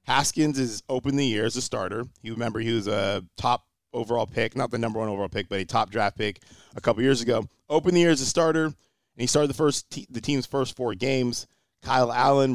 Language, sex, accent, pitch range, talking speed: English, male, American, 110-130 Hz, 235 wpm